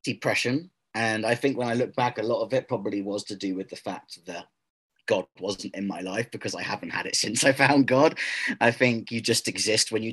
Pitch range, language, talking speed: 100-120 Hz, English, 245 wpm